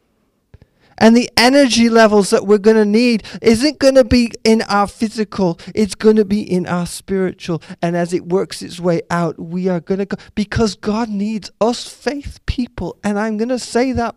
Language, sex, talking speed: English, male, 200 wpm